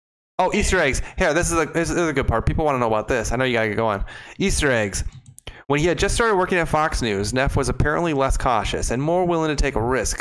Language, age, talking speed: English, 30-49, 280 wpm